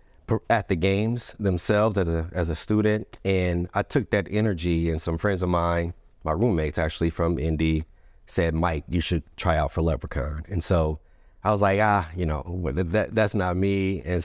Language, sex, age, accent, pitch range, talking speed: English, male, 30-49, American, 80-105 Hz, 185 wpm